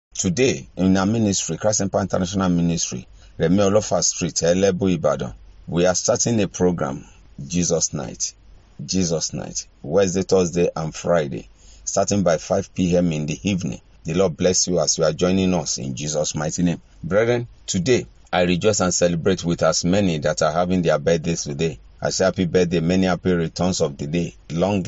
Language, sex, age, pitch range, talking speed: English, male, 40-59, 85-95 Hz, 165 wpm